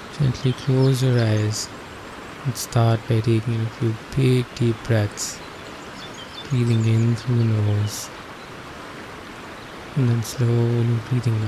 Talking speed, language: 115 wpm, English